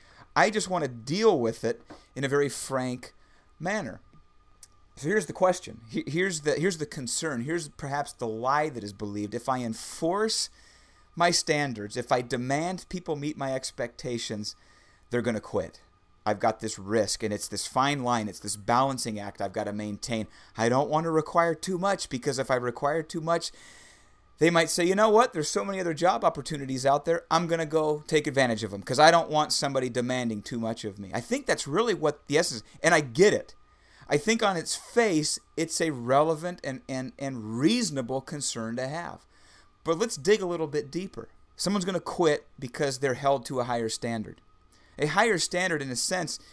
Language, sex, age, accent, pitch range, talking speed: English, male, 30-49, American, 115-165 Hz, 200 wpm